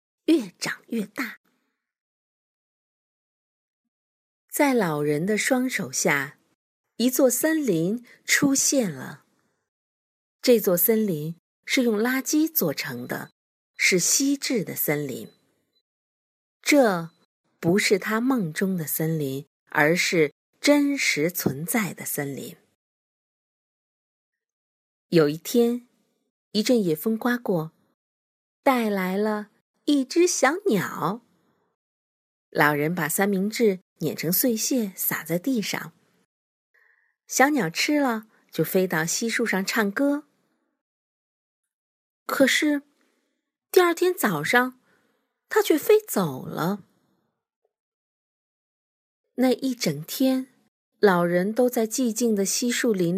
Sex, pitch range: female, 170-260 Hz